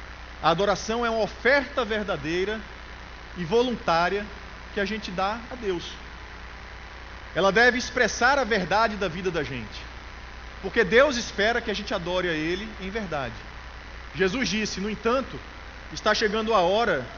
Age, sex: 40-59, male